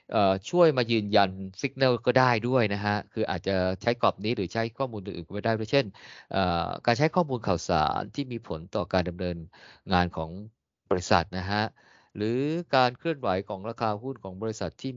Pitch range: 90-115 Hz